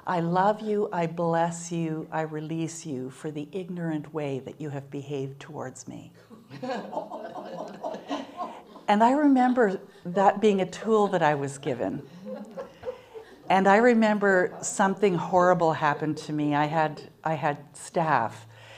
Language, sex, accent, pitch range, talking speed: English, female, American, 145-190 Hz, 135 wpm